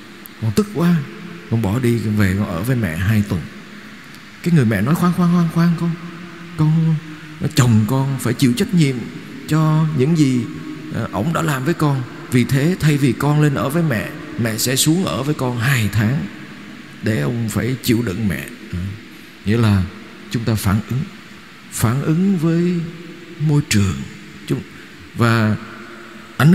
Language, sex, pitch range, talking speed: Vietnamese, male, 110-165 Hz, 165 wpm